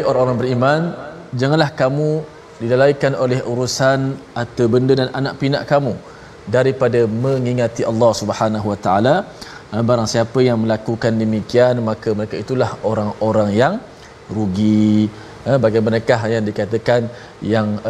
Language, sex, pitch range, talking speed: Malayalam, male, 110-125 Hz, 115 wpm